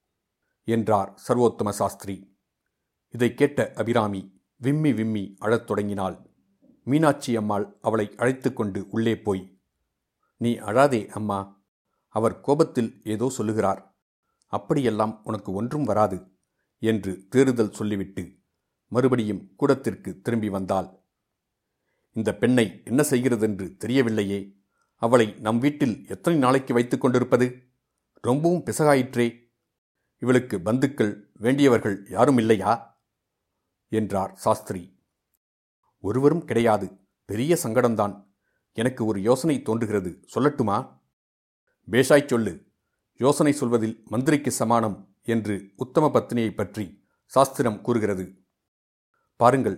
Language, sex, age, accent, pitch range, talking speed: Tamil, male, 50-69, native, 100-125 Hz, 90 wpm